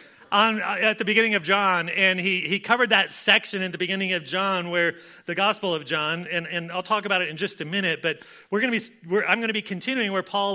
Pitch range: 150-190 Hz